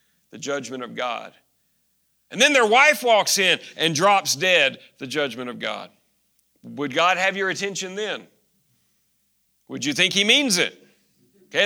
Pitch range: 165-220 Hz